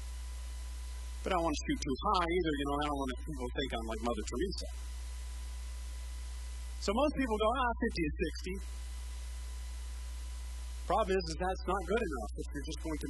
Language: English